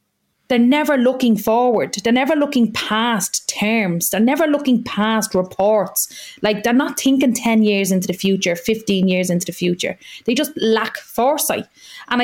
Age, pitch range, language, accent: 30-49, 195-240 Hz, English, Irish